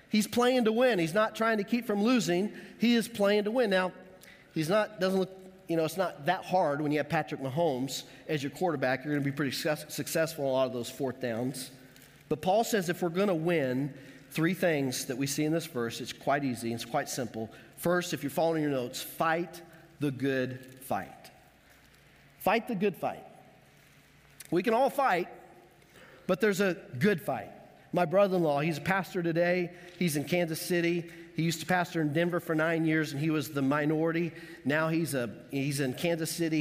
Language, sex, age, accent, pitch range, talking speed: English, male, 40-59, American, 140-185 Hz, 205 wpm